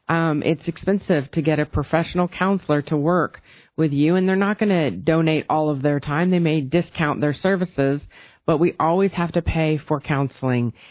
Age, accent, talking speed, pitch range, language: 40-59, American, 195 wpm, 150-180 Hz, English